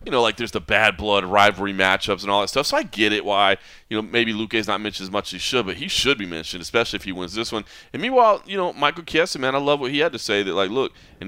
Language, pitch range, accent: English, 95-120 Hz, American